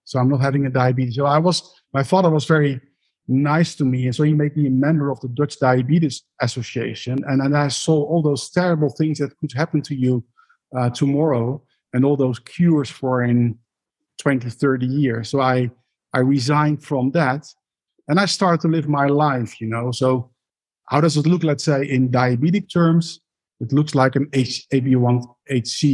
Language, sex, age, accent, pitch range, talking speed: English, male, 50-69, Dutch, 130-155 Hz, 190 wpm